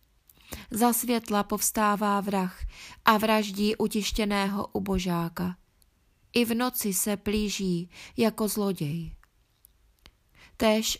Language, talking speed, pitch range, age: Czech, 85 wpm, 185-215 Hz, 20-39